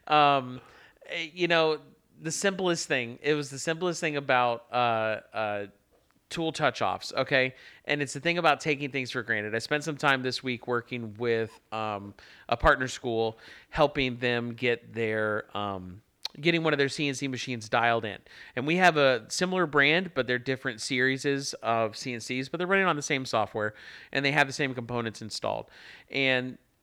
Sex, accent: male, American